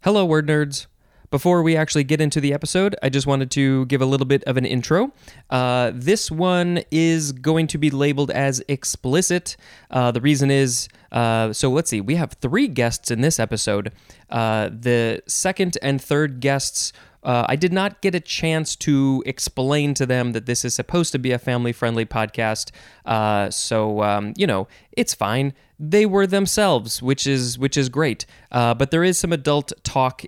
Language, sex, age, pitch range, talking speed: English, male, 20-39, 120-160 Hz, 185 wpm